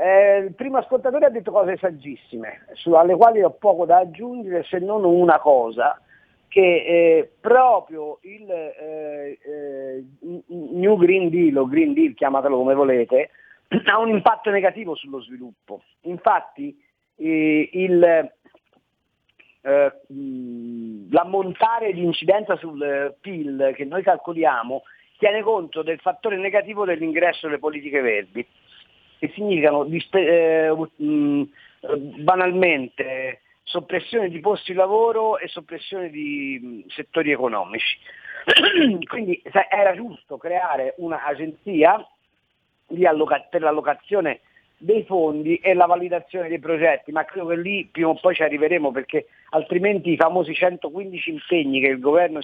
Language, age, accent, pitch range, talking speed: Italian, 50-69, native, 150-205 Hz, 120 wpm